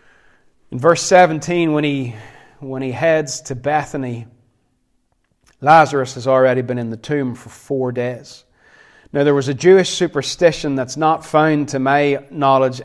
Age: 30-49